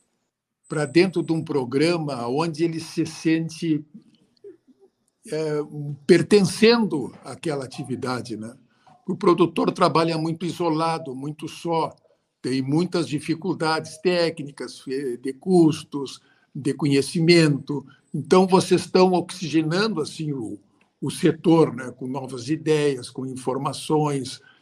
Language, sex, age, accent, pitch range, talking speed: Portuguese, male, 60-79, Brazilian, 140-180 Hz, 105 wpm